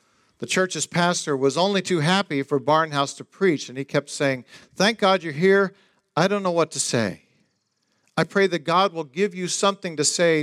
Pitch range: 130-170 Hz